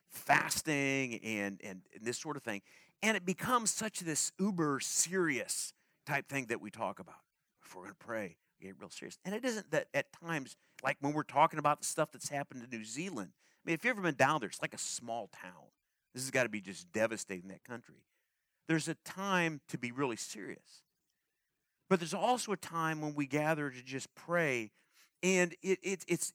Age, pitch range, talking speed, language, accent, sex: 40-59, 140-190 Hz, 205 wpm, English, American, male